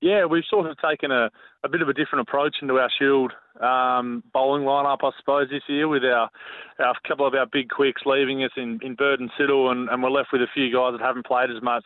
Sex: male